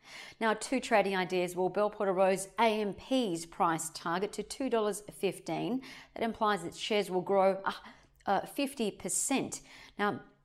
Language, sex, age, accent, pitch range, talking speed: English, female, 40-59, Australian, 180-220 Hz, 130 wpm